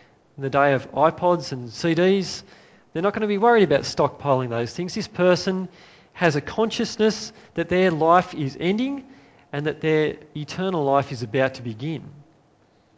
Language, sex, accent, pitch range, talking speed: English, male, Australian, 140-180 Hz, 165 wpm